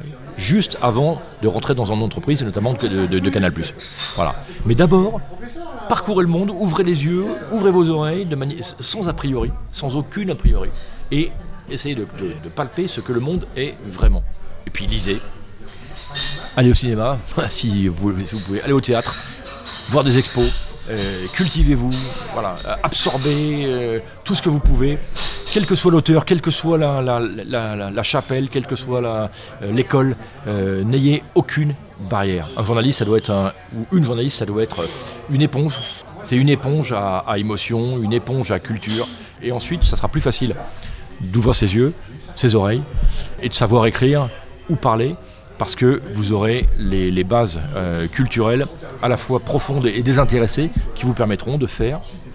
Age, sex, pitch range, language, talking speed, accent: 40-59, male, 105-145 Hz, French, 175 wpm, French